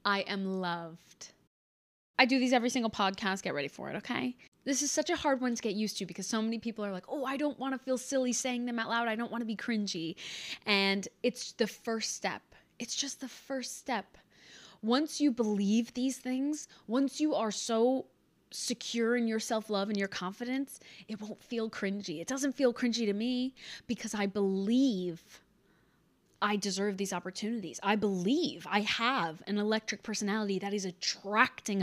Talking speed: 190 wpm